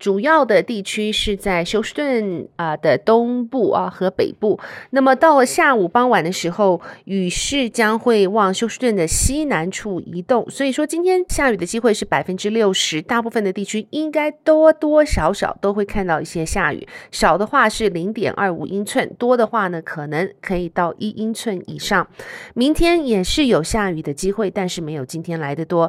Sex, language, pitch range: female, Chinese, 185-250 Hz